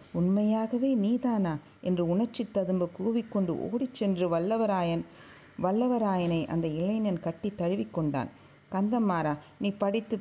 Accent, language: native, Tamil